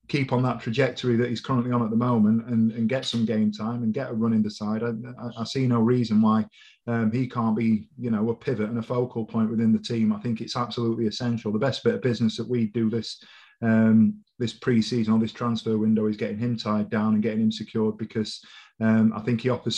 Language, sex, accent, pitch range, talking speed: English, male, British, 110-120 Hz, 250 wpm